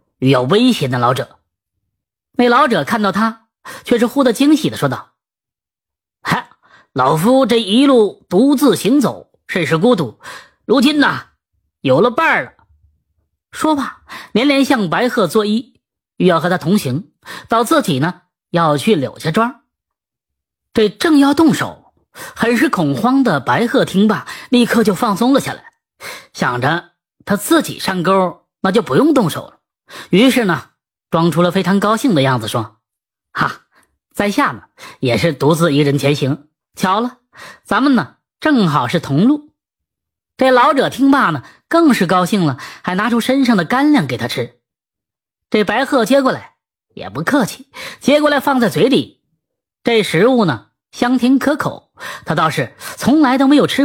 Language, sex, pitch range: Chinese, female, 170-260 Hz